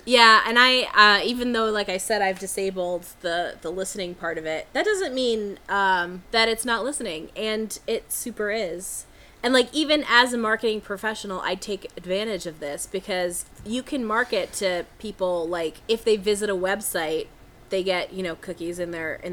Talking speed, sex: 185 wpm, female